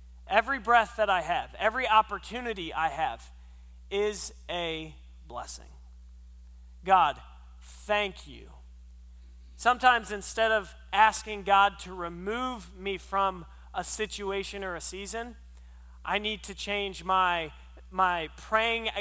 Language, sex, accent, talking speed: English, male, American, 115 wpm